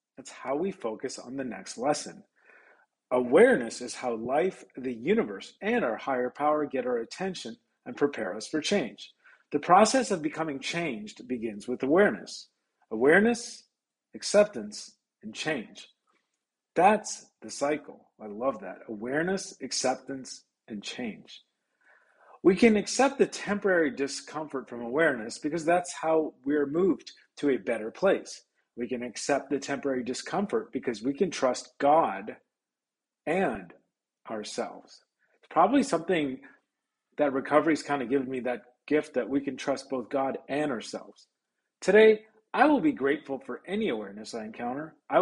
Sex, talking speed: male, 145 wpm